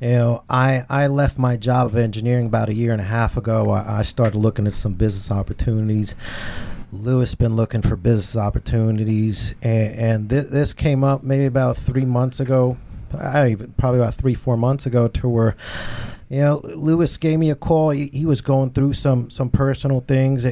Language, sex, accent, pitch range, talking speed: English, male, American, 110-130 Hz, 190 wpm